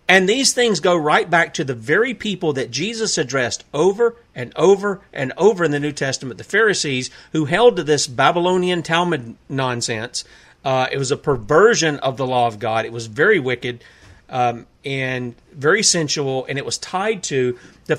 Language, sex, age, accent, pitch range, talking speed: English, male, 40-59, American, 135-190 Hz, 185 wpm